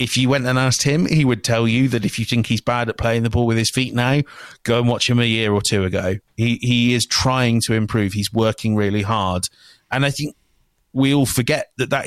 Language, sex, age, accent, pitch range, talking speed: English, male, 30-49, British, 110-135 Hz, 255 wpm